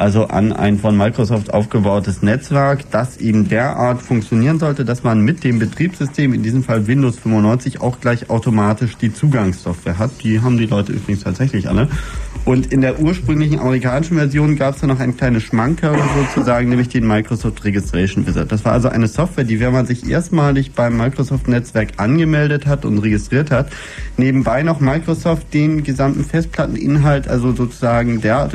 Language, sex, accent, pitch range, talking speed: German, male, German, 110-140 Hz, 170 wpm